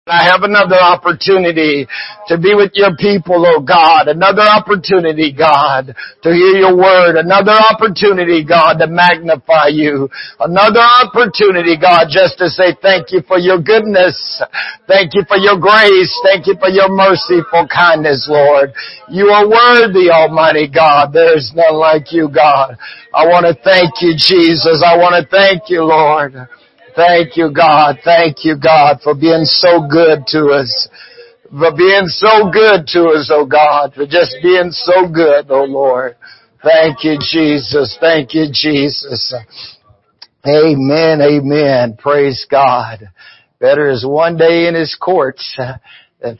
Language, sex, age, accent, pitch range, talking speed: English, male, 60-79, American, 145-185 Hz, 150 wpm